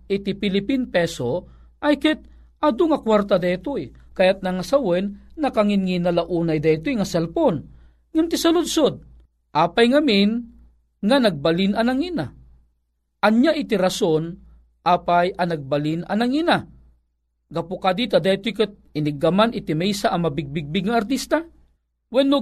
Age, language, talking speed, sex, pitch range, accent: 40-59, Filipino, 120 wpm, male, 170-235 Hz, native